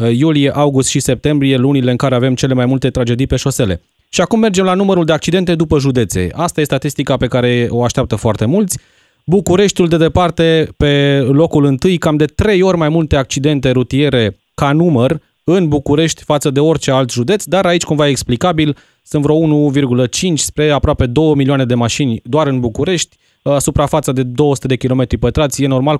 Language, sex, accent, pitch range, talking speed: Romanian, male, native, 135-170 Hz, 185 wpm